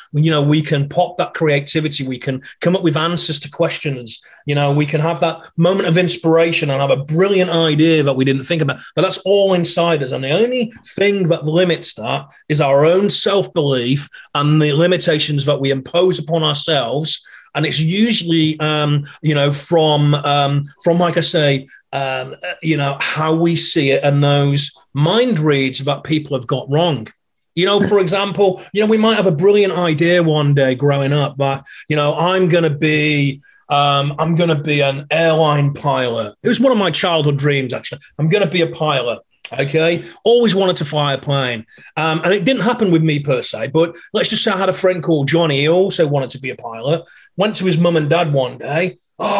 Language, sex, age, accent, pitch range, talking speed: English, male, 30-49, British, 145-175 Hz, 210 wpm